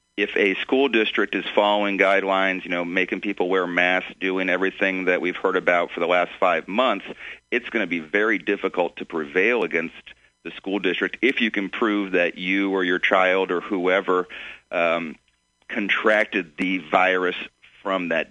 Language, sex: English, male